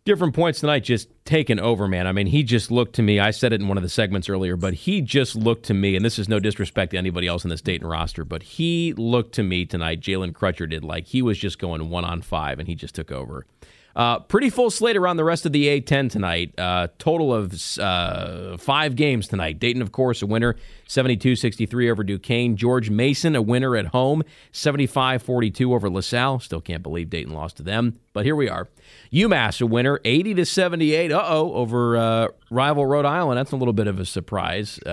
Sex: male